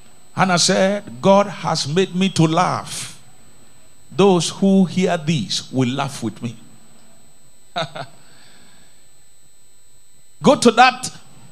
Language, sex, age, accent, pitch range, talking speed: English, male, 50-69, Nigerian, 160-235 Hz, 100 wpm